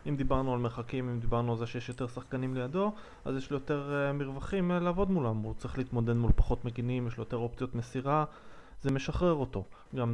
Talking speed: 200 wpm